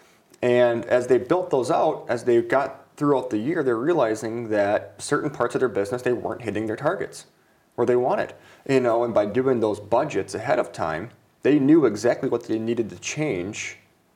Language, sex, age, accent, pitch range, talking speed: English, male, 30-49, American, 105-130 Hz, 195 wpm